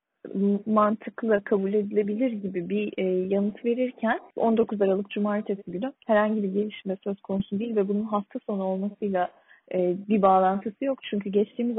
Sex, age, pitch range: female, 30-49, 195-225 Hz